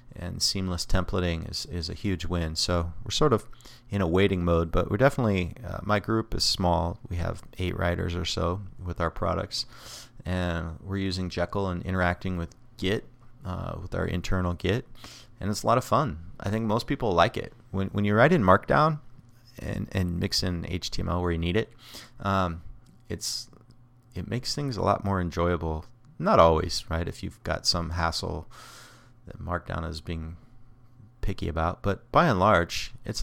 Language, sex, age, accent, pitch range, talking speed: English, male, 30-49, American, 90-115 Hz, 180 wpm